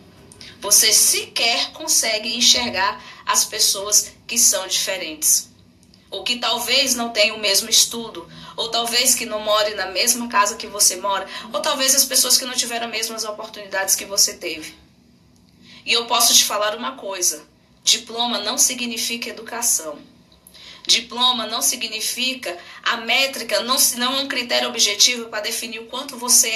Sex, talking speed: female, 155 wpm